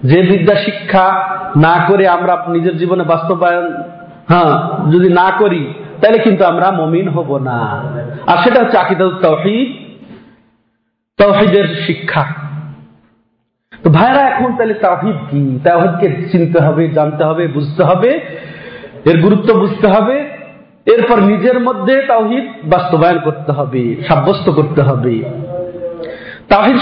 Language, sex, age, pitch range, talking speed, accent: Bengali, male, 50-69, 160-215 Hz, 65 wpm, native